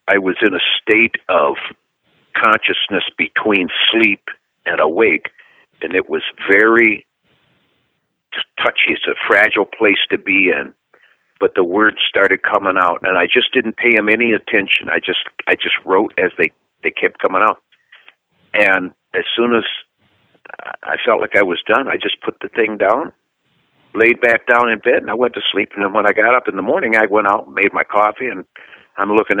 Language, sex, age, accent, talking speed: English, male, 60-79, American, 190 wpm